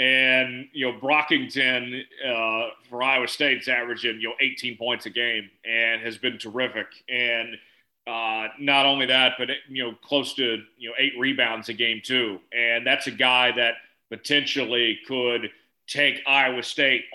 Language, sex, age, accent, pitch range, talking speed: English, male, 40-59, American, 115-140 Hz, 160 wpm